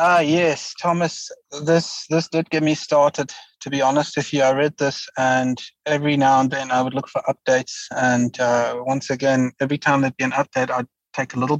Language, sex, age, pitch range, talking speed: English, male, 30-49, 130-150 Hz, 210 wpm